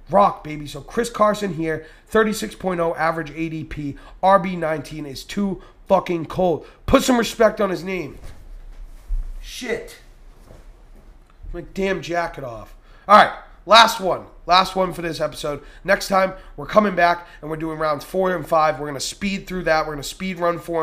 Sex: male